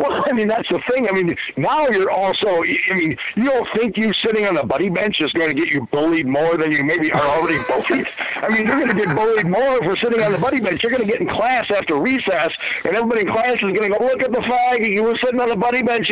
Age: 50-69